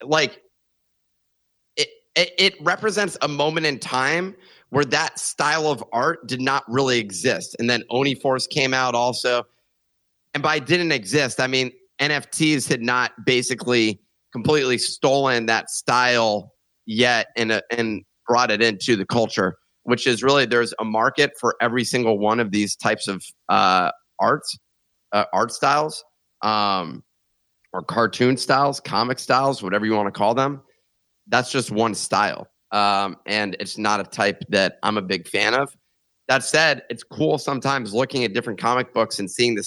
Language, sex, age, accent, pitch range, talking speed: English, male, 30-49, American, 110-135 Hz, 165 wpm